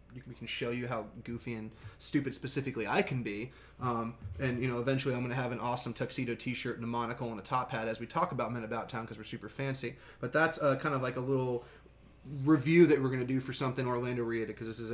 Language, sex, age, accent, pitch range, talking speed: English, male, 20-39, American, 120-140 Hz, 255 wpm